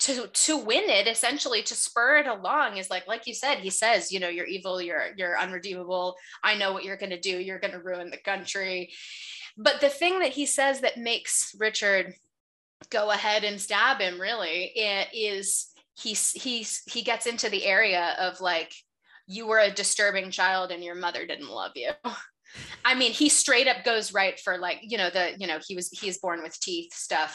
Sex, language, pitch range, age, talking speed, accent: female, English, 180-255 Hz, 20-39, 205 wpm, American